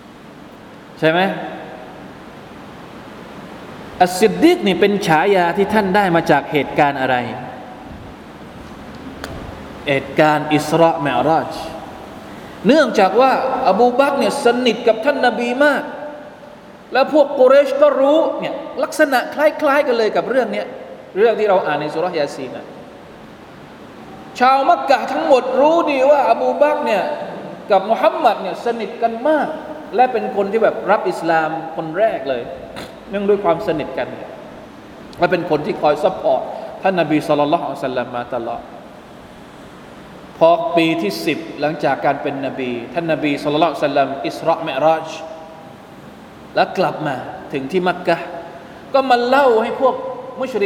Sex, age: male, 20-39